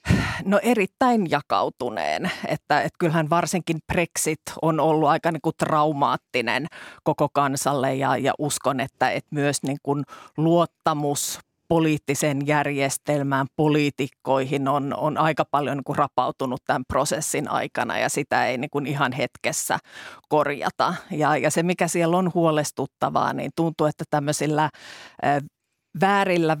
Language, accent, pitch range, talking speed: Finnish, native, 145-170 Hz, 130 wpm